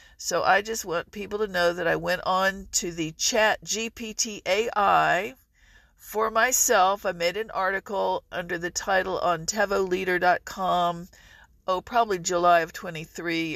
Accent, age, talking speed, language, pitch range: American, 50-69, 135 wpm, English, 175-220 Hz